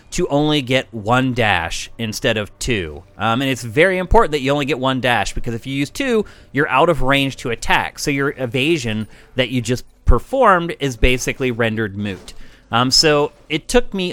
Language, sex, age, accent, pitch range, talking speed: English, male, 30-49, American, 115-150 Hz, 195 wpm